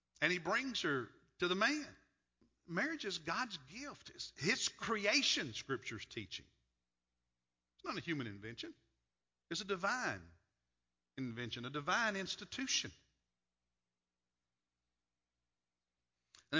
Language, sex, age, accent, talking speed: English, male, 60-79, American, 105 wpm